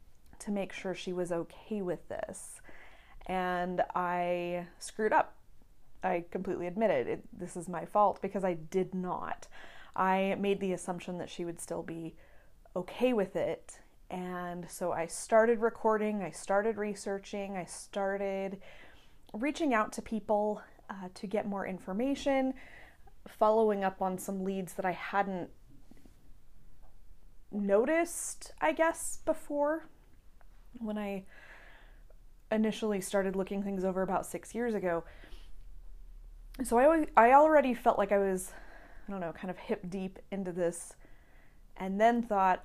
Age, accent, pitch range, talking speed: 20-39, American, 180-210 Hz, 140 wpm